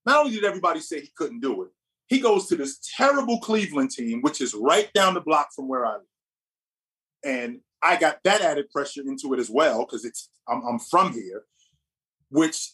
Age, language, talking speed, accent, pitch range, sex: 30-49, English, 205 wpm, American, 165-230 Hz, male